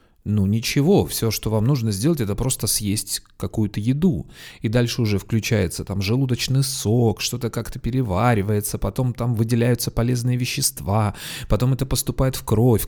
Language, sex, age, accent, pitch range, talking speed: Russian, male, 30-49, native, 110-140 Hz, 150 wpm